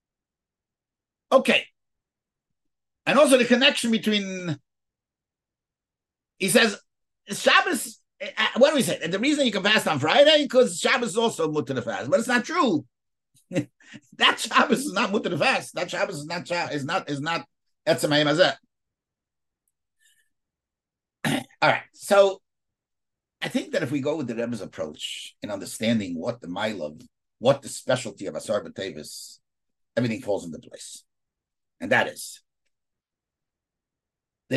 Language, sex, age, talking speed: English, male, 50-69, 140 wpm